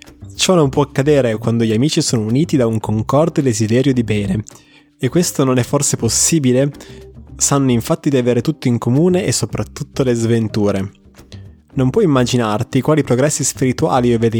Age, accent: 20-39, native